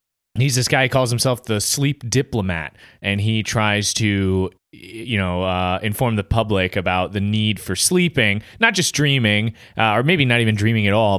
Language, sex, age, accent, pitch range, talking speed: English, male, 20-39, American, 105-130 Hz, 190 wpm